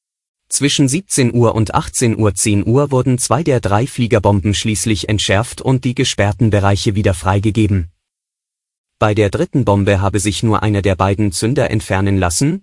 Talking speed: 160 wpm